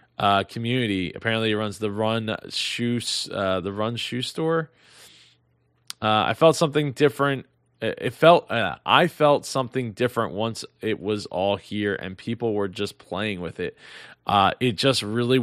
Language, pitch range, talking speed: English, 100-125 Hz, 160 wpm